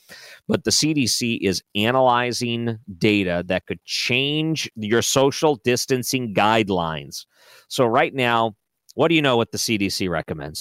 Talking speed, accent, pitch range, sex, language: 135 wpm, American, 95-135 Hz, male, English